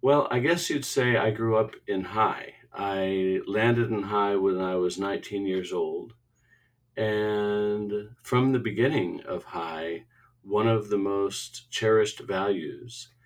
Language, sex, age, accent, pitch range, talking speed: English, male, 50-69, American, 100-125 Hz, 145 wpm